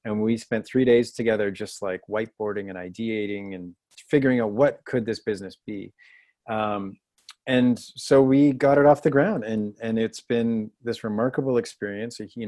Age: 30-49